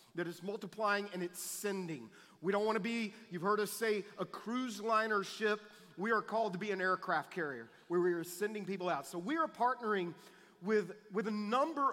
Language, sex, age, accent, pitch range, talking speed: English, male, 40-59, American, 175-205 Hz, 200 wpm